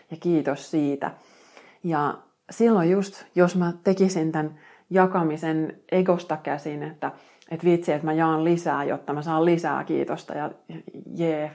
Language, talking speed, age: Finnish, 140 wpm, 30-49